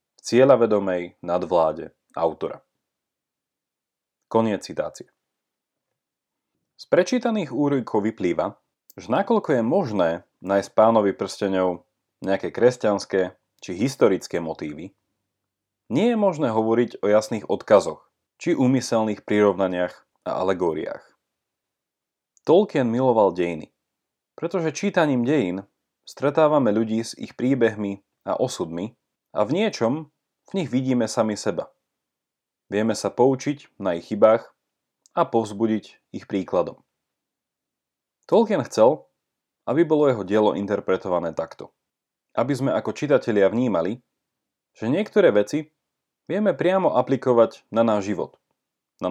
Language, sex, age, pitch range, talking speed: Slovak, male, 30-49, 100-140 Hz, 105 wpm